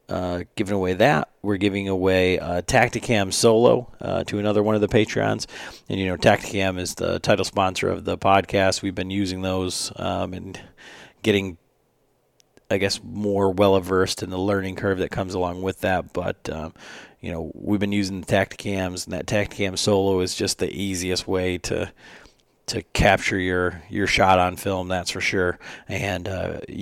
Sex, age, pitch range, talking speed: male, 40-59, 90-100 Hz, 180 wpm